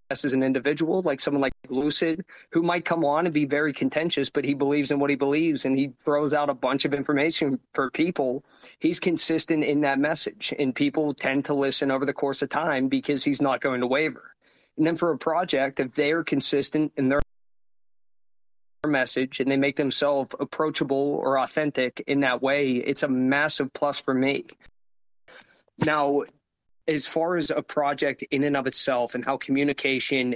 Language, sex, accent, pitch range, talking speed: English, male, American, 130-150 Hz, 185 wpm